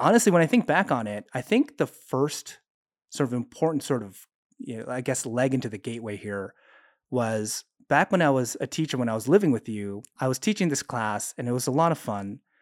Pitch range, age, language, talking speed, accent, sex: 110-145 Hz, 30-49, English, 240 wpm, American, male